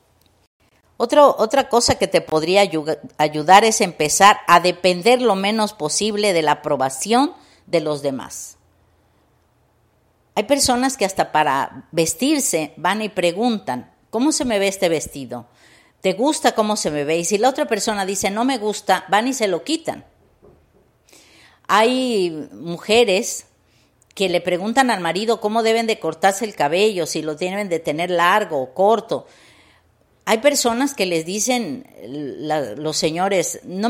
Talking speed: 150 wpm